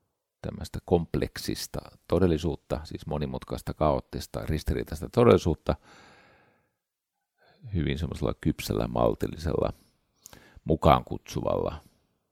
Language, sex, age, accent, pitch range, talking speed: Finnish, male, 50-69, native, 70-95 Hz, 70 wpm